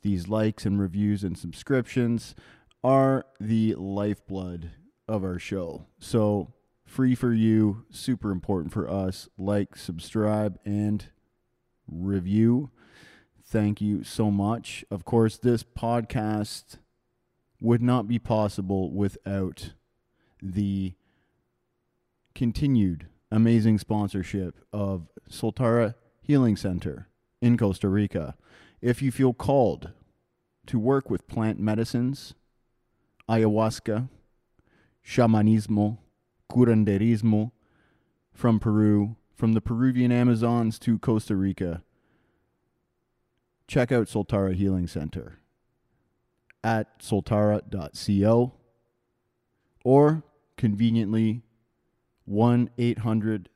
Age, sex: 30-49, male